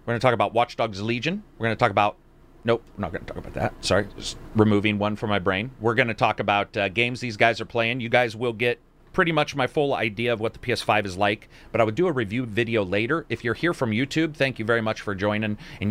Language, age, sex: English, 40-59, male